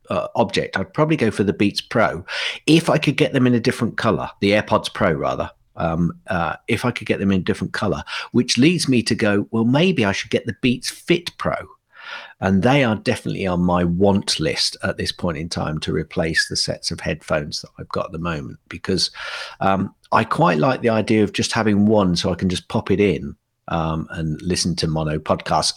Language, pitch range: English, 100-155 Hz